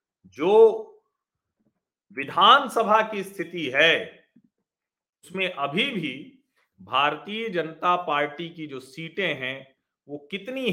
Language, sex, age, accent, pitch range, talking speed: Hindi, male, 40-59, native, 175-295 Hz, 95 wpm